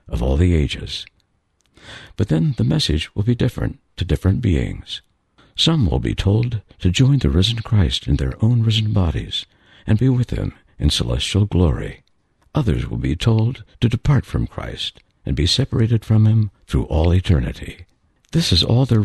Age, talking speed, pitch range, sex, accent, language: 60-79, 175 wpm, 85-120 Hz, male, American, English